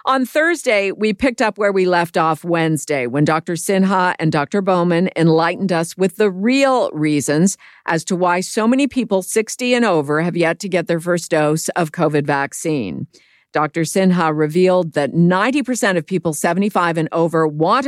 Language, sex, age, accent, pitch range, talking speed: English, female, 50-69, American, 160-210 Hz, 175 wpm